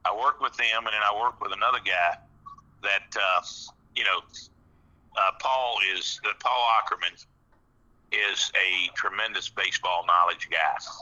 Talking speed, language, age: 160 wpm, English, 50-69